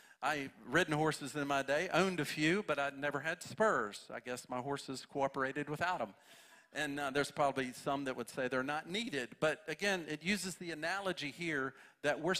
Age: 50-69